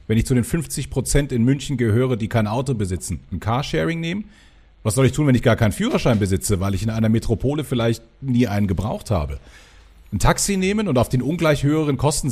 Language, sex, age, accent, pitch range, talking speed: German, male, 40-59, German, 105-150 Hz, 215 wpm